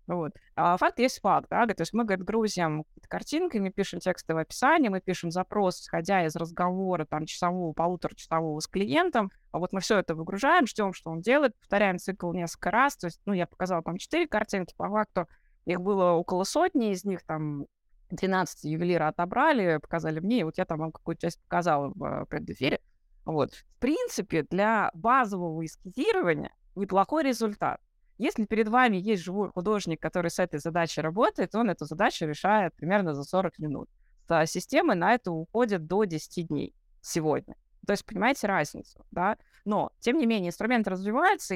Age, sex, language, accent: 20-39, female, Russian, native